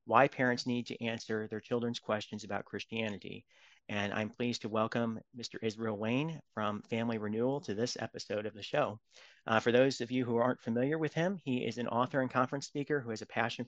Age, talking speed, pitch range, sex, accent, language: 40-59, 210 wpm, 110-125 Hz, male, American, English